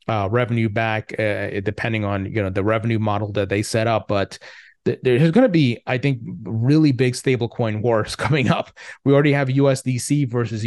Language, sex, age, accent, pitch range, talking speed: English, male, 30-49, American, 105-135 Hz, 190 wpm